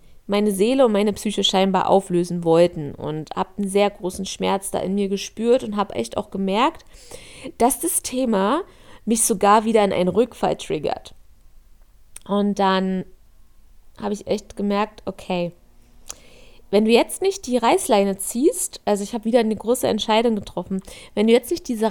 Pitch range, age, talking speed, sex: 200-240 Hz, 20-39, 165 wpm, female